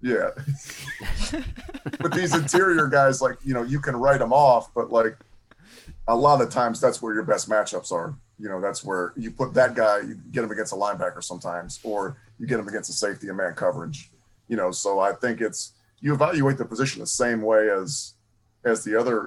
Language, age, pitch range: English, 30-49, 100-130 Hz